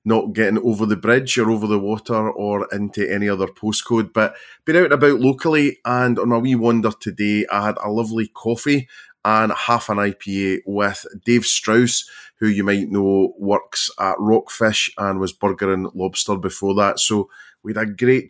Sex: male